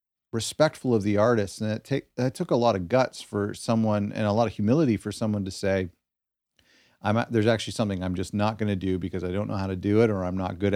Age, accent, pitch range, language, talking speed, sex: 40-59, American, 95-110 Hz, English, 250 wpm, male